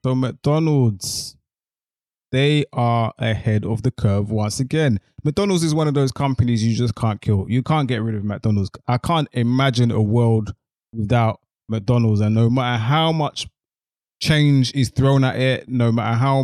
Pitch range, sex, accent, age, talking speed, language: 115-130 Hz, male, British, 20-39, 170 wpm, English